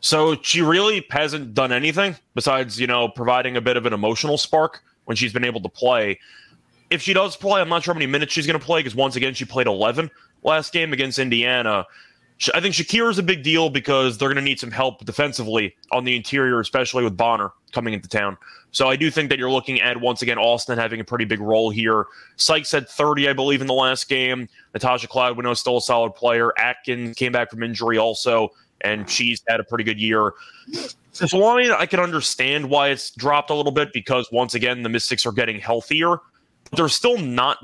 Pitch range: 120-155 Hz